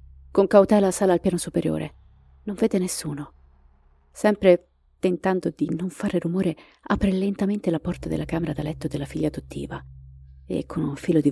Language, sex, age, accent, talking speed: Italian, female, 30-49, native, 165 wpm